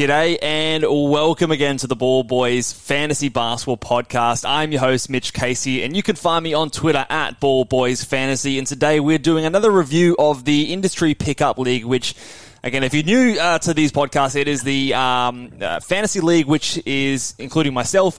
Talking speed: 190 wpm